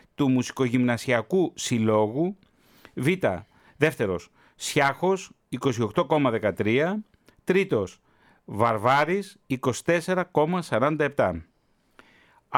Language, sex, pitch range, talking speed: Greek, male, 120-170 Hz, 50 wpm